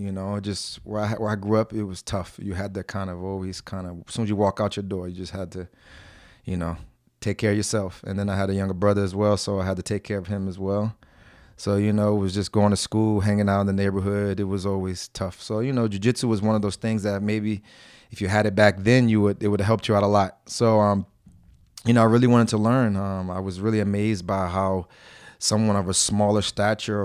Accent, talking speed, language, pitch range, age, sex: American, 275 wpm, English, 95-110 Hz, 30-49, male